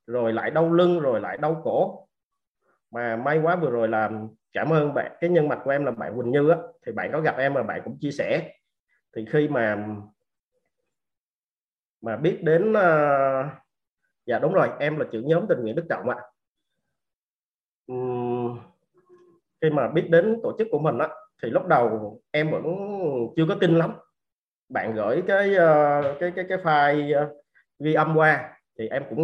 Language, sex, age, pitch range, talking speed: Vietnamese, male, 30-49, 130-175 Hz, 165 wpm